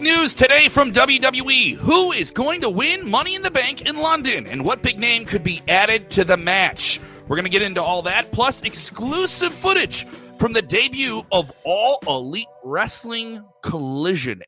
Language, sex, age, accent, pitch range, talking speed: English, male, 40-59, American, 140-205 Hz, 180 wpm